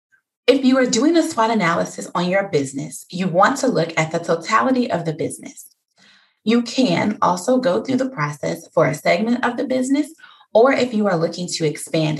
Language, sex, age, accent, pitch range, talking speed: English, female, 20-39, American, 165-250 Hz, 195 wpm